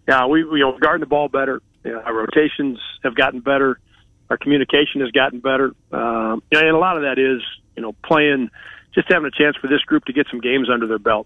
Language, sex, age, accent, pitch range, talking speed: English, male, 50-69, American, 120-145 Hz, 240 wpm